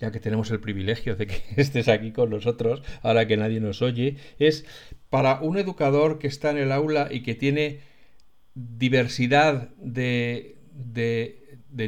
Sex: male